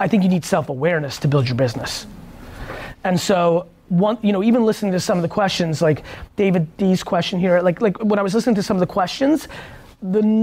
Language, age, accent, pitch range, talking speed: English, 30-49, American, 175-220 Hz, 220 wpm